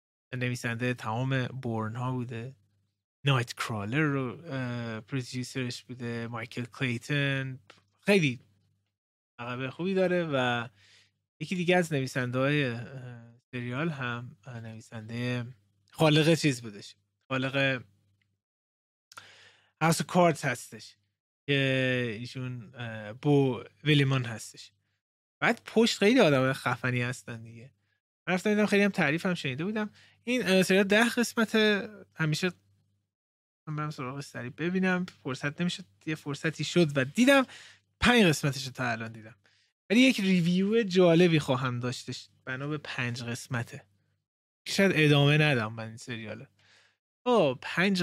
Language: Persian